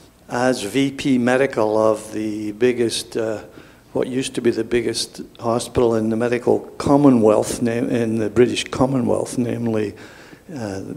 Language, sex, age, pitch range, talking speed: English, male, 60-79, 110-130 Hz, 130 wpm